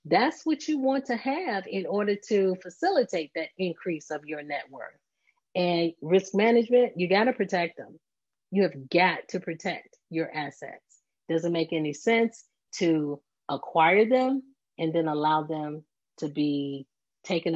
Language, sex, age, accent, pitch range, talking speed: English, female, 40-59, American, 150-205 Hz, 155 wpm